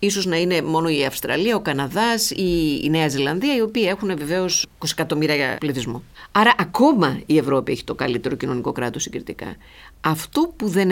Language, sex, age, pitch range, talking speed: Greek, female, 50-69, 150-225 Hz, 180 wpm